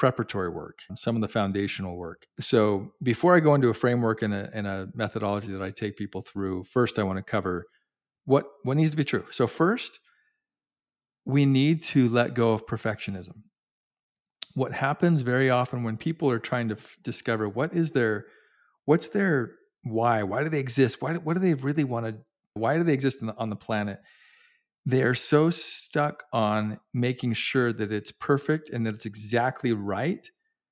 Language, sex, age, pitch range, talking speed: English, male, 40-59, 110-150 Hz, 190 wpm